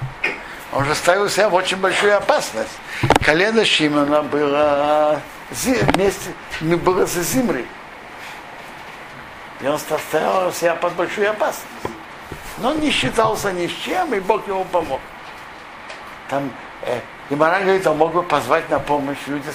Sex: male